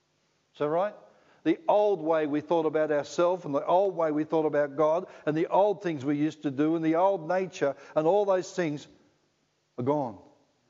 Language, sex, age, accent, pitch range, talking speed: English, male, 60-79, Australian, 145-175 Hz, 200 wpm